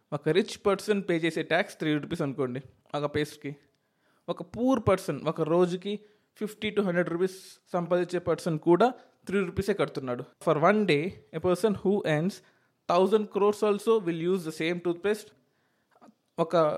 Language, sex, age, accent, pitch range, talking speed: Telugu, male, 20-39, native, 150-195 Hz, 155 wpm